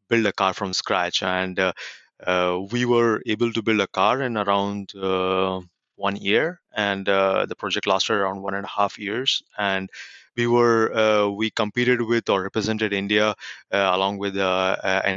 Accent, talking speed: Indian, 180 wpm